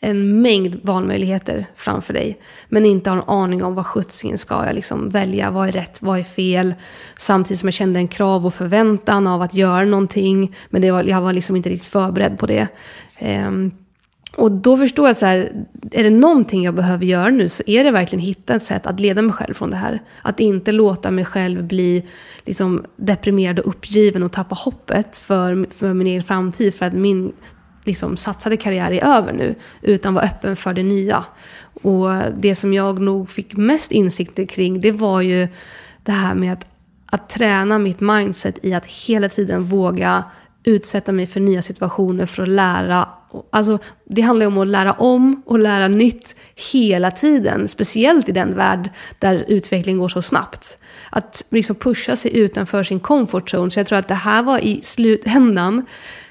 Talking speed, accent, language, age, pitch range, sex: 190 wpm, native, Swedish, 20-39, 185-215 Hz, female